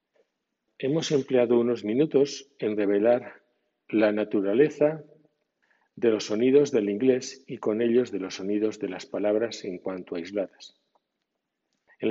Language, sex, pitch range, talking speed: Spanish, male, 105-125 Hz, 135 wpm